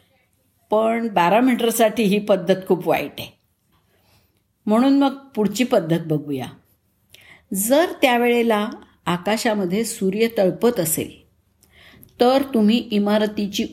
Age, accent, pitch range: 50-69, native, 160-235 Hz